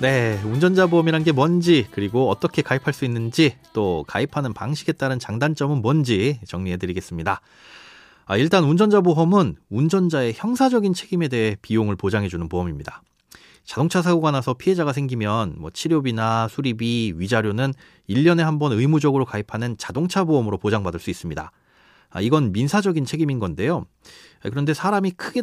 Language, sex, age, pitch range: Korean, male, 30-49, 110-165 Hz